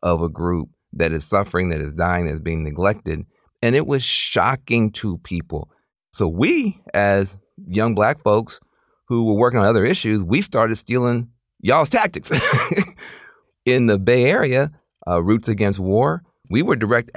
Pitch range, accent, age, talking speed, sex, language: 85-115 Hz, American, 40-59, 165 wpm, male, English